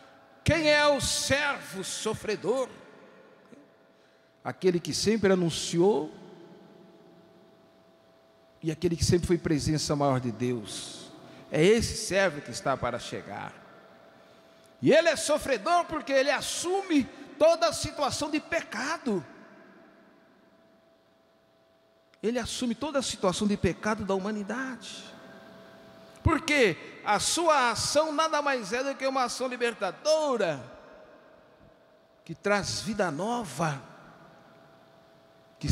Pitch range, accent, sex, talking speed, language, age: 170-275 Hz, Brazilian, male, 105 wpm, Portuguese, 60-79